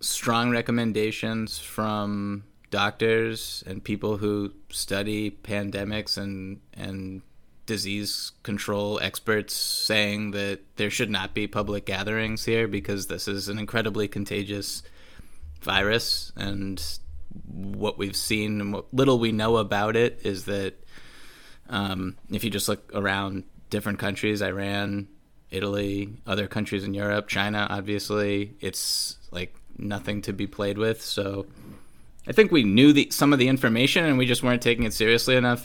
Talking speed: 140 wpm